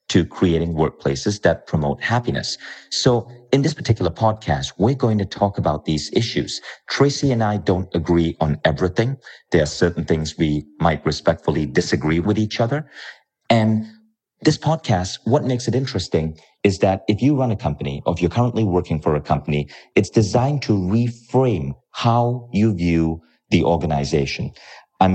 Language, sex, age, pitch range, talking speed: English, male, 40-59, 80-110 Hz, 160 wpm